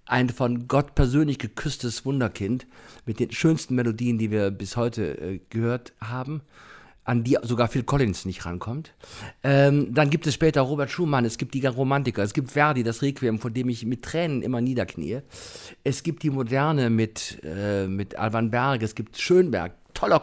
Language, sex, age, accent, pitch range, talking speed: German, male, 50-69, German, 115-145 Hz, 180 wpm